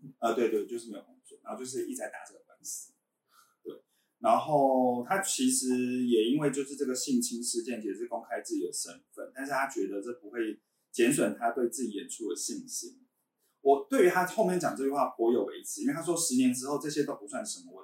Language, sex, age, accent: Chinese, male, 30-49, native